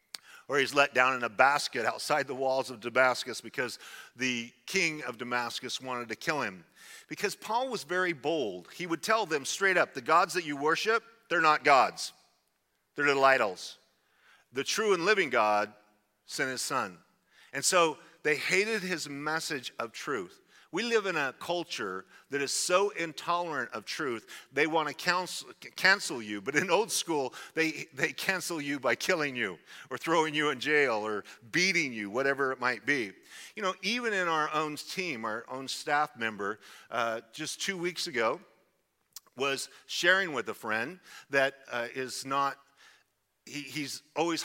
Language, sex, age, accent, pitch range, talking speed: English, male, 40-59, American, 125-175 Hz, 170 wpm